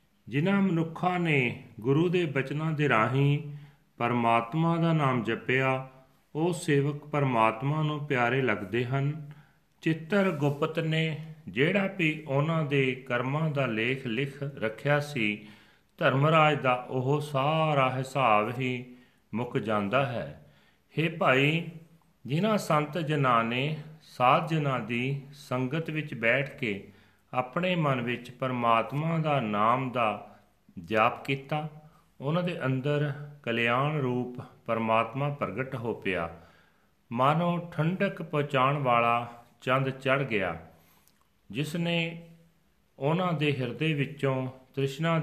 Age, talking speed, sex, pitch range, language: 40-59, 115 wpm, male, 125-155 Hz, Punjabi